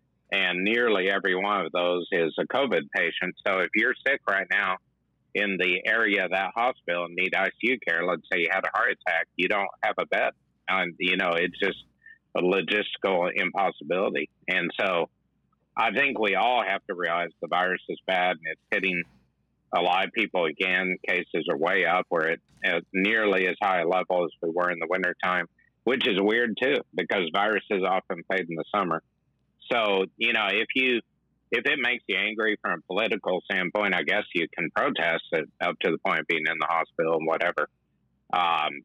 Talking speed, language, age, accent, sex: 195 wpm, English, 50-69, American, male